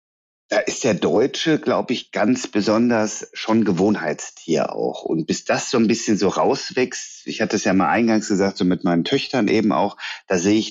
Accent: German